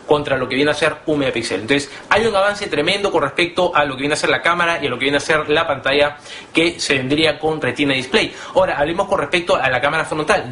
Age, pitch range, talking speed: 30-49, 135-170 Hz, 260 wpm